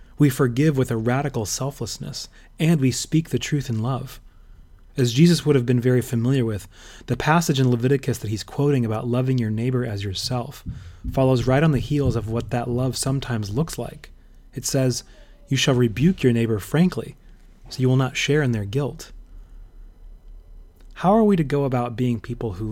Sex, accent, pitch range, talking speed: male, American, 110-135 Hz, 190 wpm